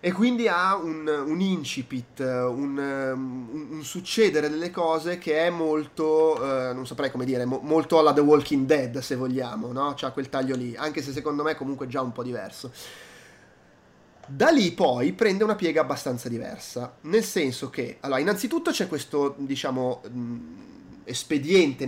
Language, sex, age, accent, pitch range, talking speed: Italian, male, 20-39, native, 130-175 Hz, 160 wpm